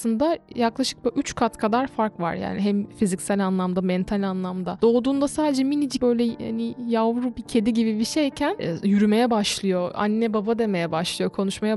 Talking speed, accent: 155 wpm, native